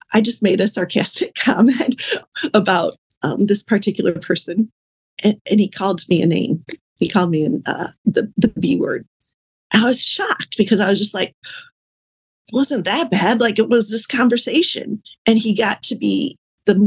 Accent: American